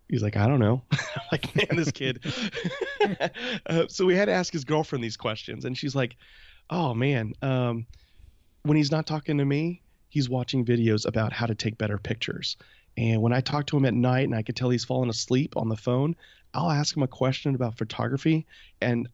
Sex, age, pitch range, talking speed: male, 30-49, 110-130 Hz, 205 wpm